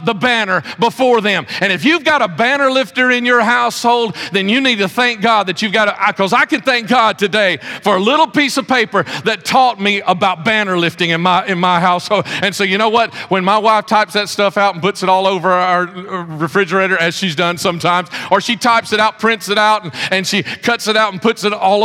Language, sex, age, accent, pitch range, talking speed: English, male, 40-59, American, 185-235 Hz, 240 wpm